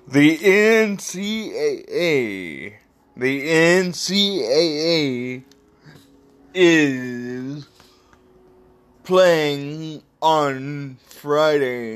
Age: 30-49